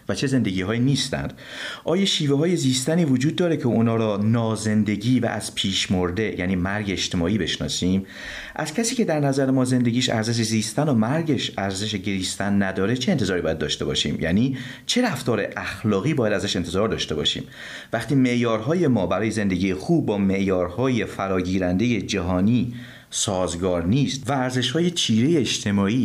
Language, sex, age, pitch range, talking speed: Persian, male, 40-59, 95-130 Hz, 155 wpm